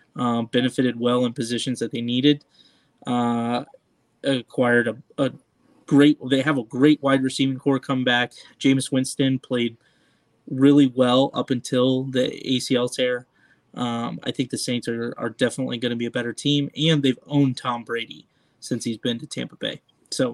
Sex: male